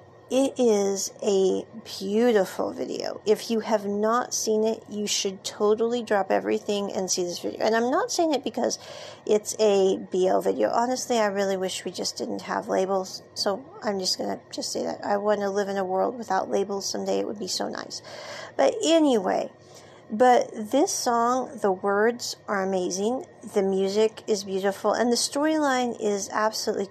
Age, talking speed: 40-59, 180 wpm